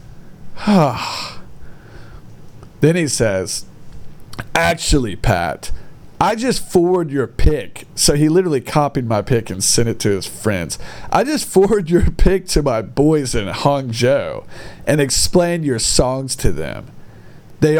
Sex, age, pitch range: male, 40-59, 115-160 Hz